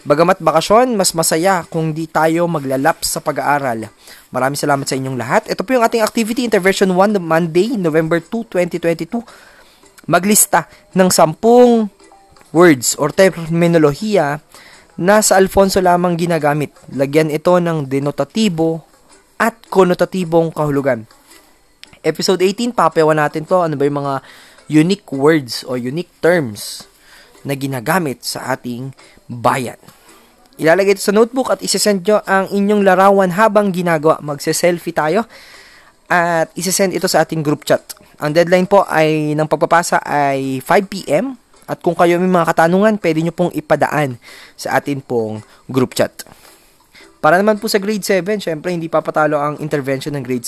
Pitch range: 145-190 Hz